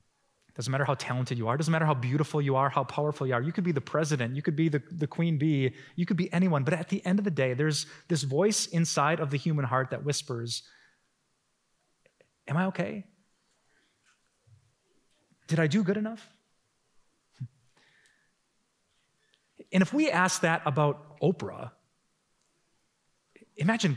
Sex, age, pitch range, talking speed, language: male, 30-49, 125-175 Hz, 165 wpm, English